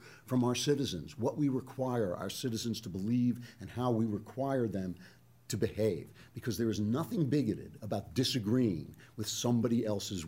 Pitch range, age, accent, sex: 100-125 Hz, 50-69, American, male